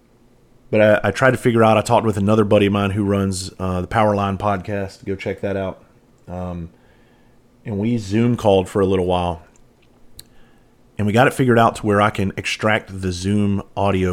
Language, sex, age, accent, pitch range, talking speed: English, male, 30-49, American, 90-115 Hz, 205 wpm